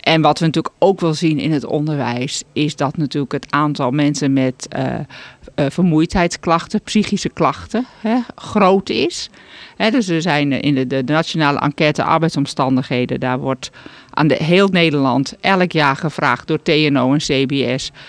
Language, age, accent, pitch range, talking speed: Dutch, 50-69, Dutch, 140-175 Hz, 155 wpm